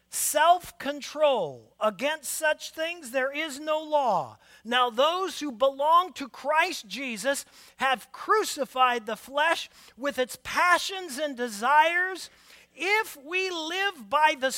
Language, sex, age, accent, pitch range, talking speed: English, male, 40-59, American, 200-315 Hz, 120 wpm